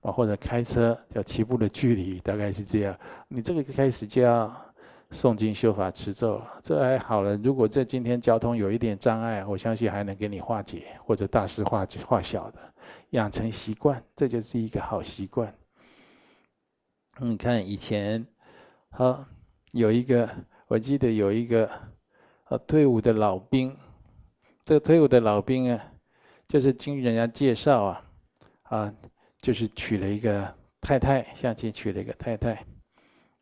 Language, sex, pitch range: Chinese, male, 105-125 Hz